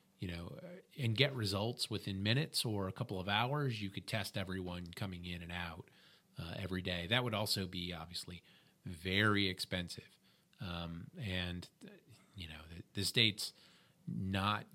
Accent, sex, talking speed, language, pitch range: American, male, 155 wpm, English, 90-115 Hz